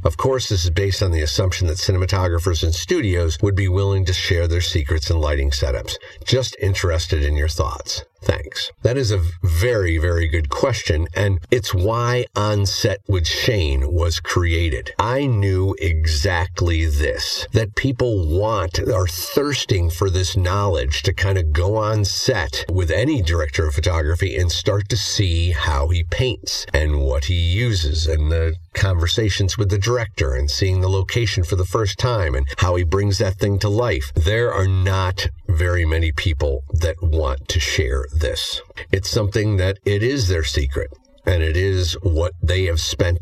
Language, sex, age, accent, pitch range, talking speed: English, male, 50-69, American, 80-100 Hz, 175 wpm